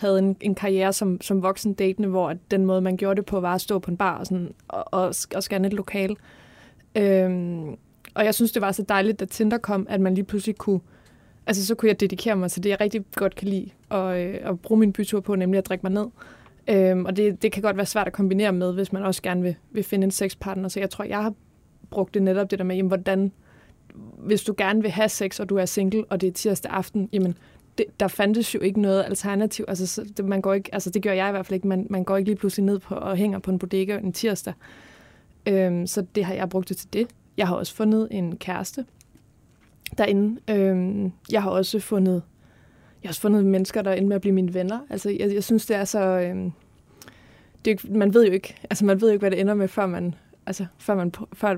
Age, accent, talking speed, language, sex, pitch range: 20-39, native, 240 wpm, Danish, female, 190-210 Hz